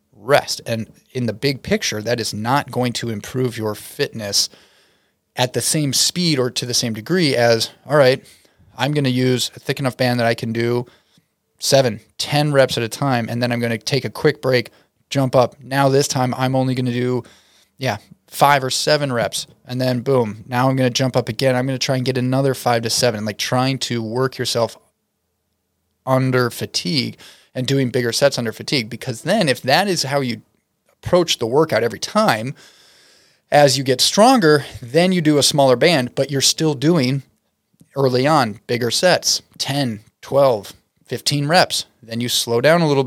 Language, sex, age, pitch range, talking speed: English, male, 30-49, 120-140 Hz, 195 wpm